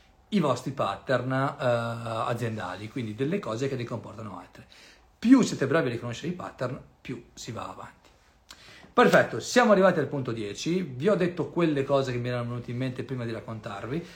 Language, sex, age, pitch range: Italian, male, 40-59, 110-145 Hz